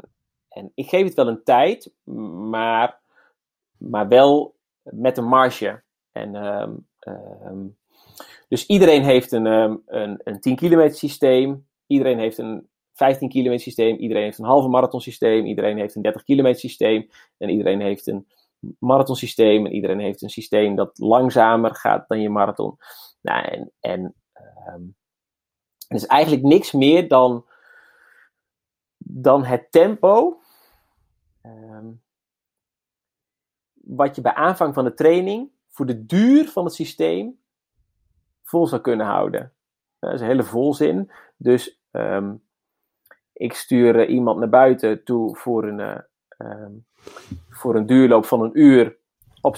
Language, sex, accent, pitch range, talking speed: Dutch, male, Dutch, 110-145 Hz, 120 wpm